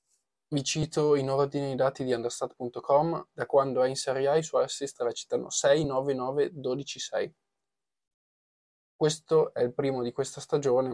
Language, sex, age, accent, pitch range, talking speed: Italian, male, 20-39, native, 125-150 Hz, 155 wpm